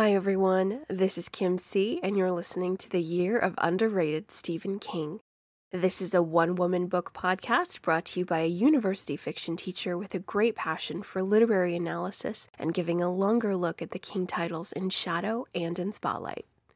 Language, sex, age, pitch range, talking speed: English, female, 20-39, 180-240 Hz, 185 wpm